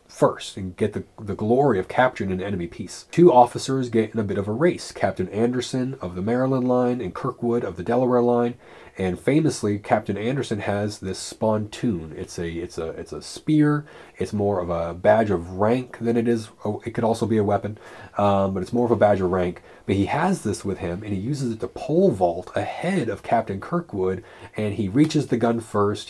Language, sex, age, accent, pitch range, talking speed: English, male, 30-49, American, 95-115 Hz, 220 wpm